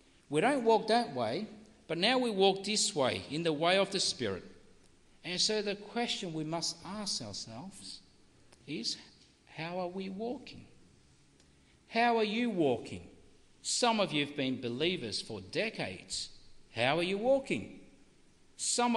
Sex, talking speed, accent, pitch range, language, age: male, 150 wpm, Australian, 140-210 Hz, English, 50-69